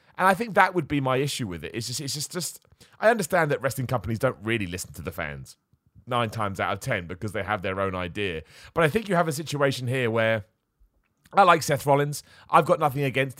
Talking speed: 240 wpm